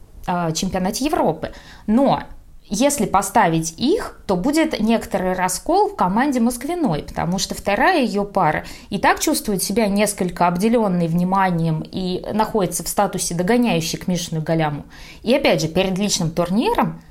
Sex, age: female, 20-39